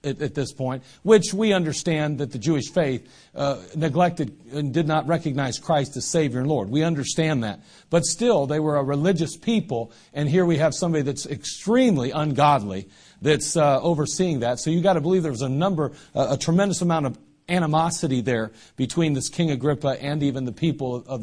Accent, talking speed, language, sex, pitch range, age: American, 195 wpm, English, male, 140-180 Hz, 50-69